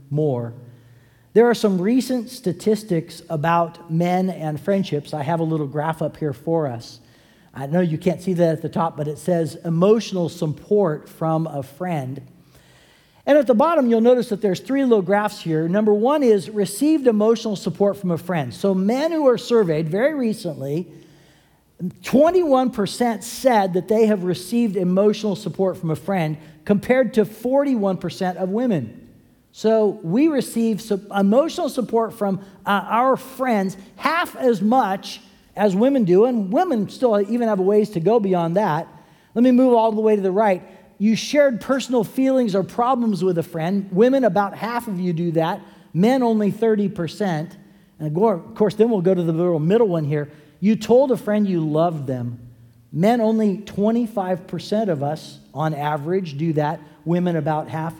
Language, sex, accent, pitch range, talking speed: English, male, American, 165-225 Hz, 170 wpm